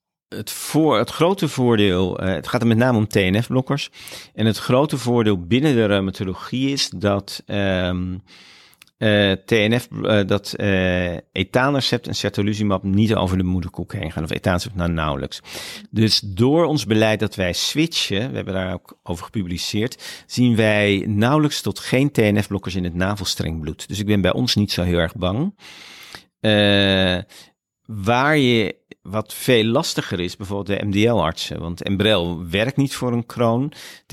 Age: 50-69